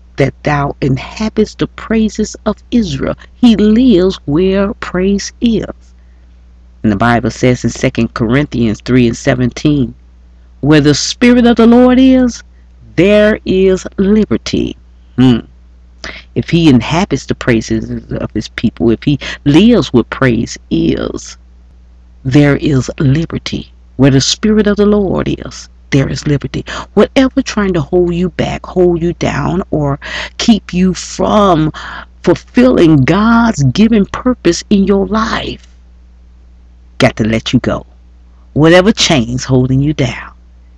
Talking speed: 130 wpm